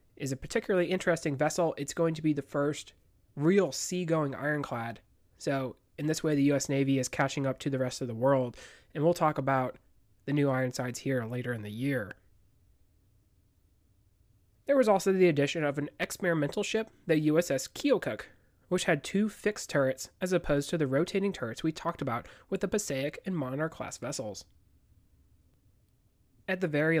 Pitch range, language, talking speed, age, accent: 110-175 Hz, English, 180 wpm, 30-49, American